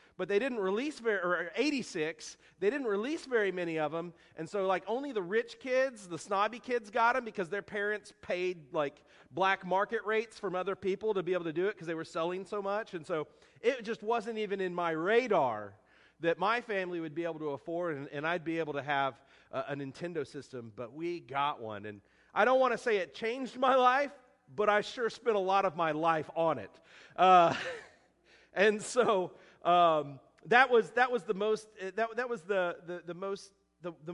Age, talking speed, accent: 40-59, 195 wpm, American